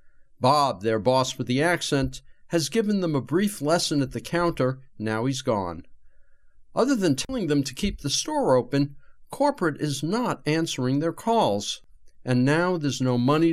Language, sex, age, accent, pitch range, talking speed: English, male, 50-69, American, 125-170 Hz, 170 wpm